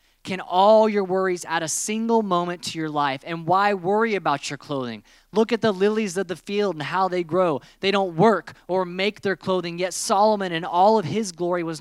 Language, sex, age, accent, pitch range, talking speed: English, male, 30-49, American, 135-185 Hz, 220 wpm